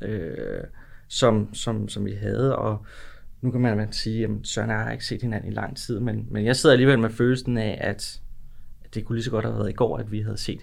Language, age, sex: Danish, 20-39, male